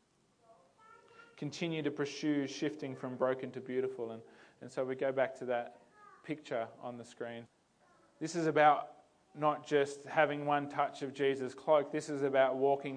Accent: Australian